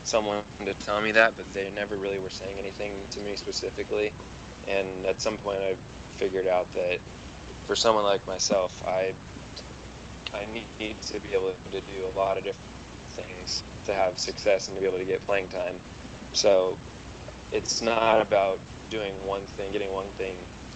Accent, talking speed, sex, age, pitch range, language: American, 175 wpm, male, 20-39, 95-100 Hz, English